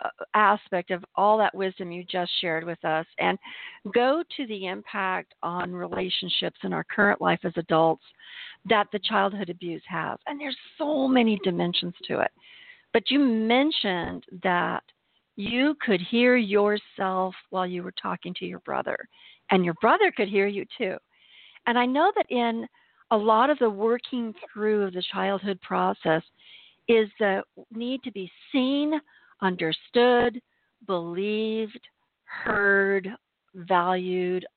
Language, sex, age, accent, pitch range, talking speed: English, female, 50-69, American, 185-245 Hz, 140 wpm